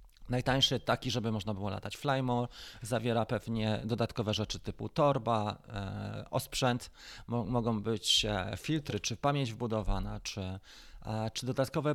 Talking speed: 115 wpm